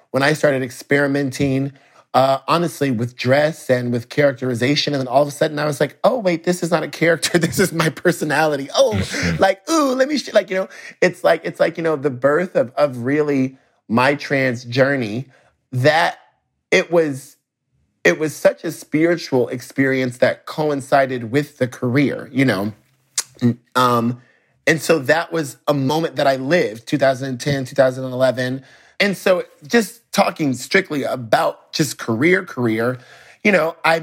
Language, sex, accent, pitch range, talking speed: English, male, American, 130-155 Hz, 180 wpm